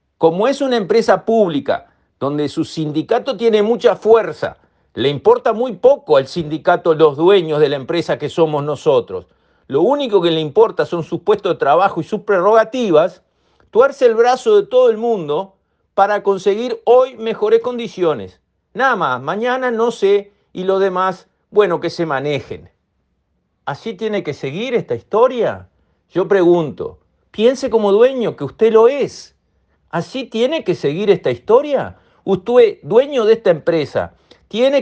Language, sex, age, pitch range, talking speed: Spanish, male, 50-69, 150-250 Hz, 155 wpm